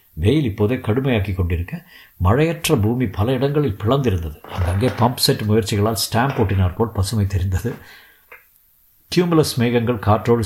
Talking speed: 115 wpm